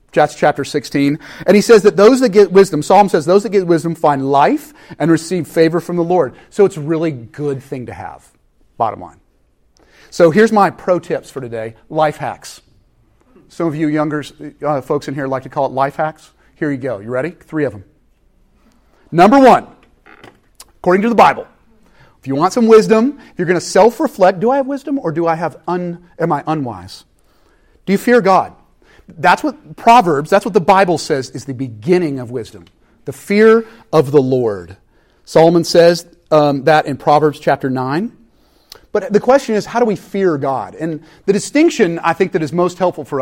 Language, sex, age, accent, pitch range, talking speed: English, male, 40-59, American, 145-195 Hz, 195 wpm